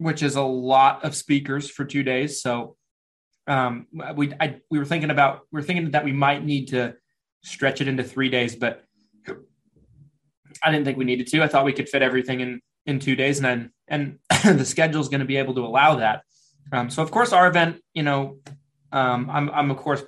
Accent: American